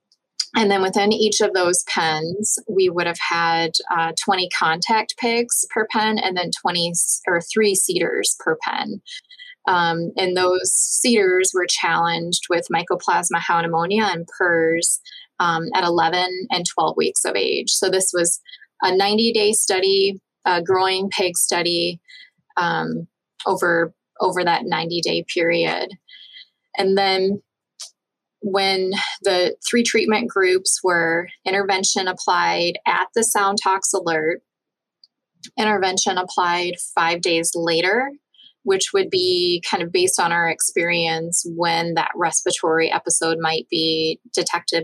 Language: English